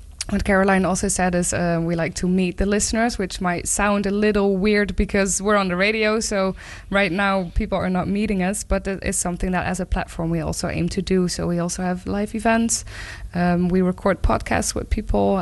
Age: 20-39